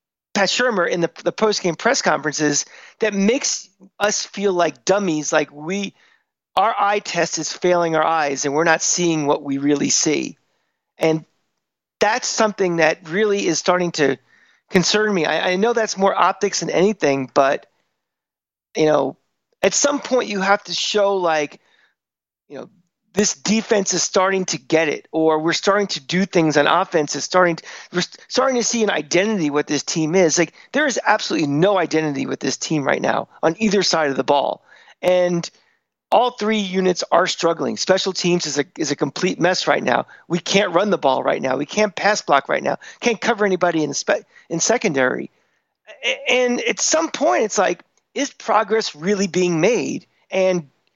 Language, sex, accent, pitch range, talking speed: English, male, American, 160-210 Hz, 185 wpm